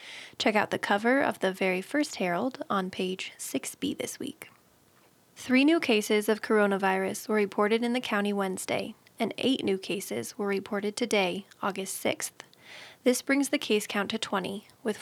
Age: 20-39